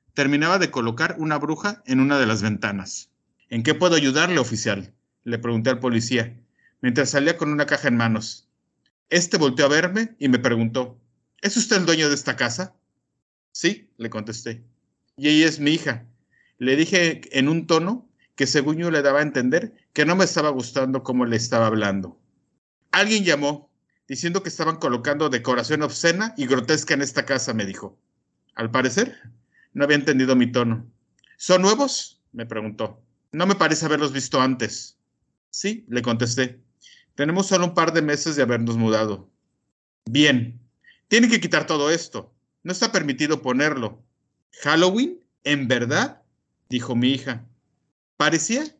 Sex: male